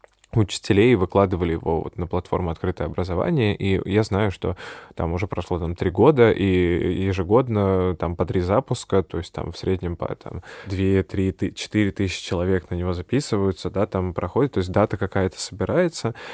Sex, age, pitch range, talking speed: male, 20-39, 90-100 Hz, 160 wpm